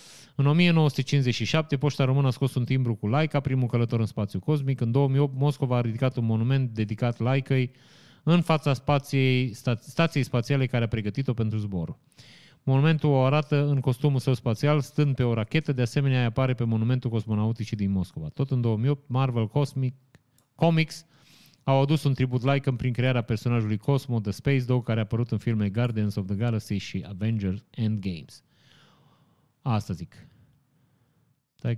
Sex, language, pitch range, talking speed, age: male, Romanian, 120-145 Hz, 165 wpm, 30-49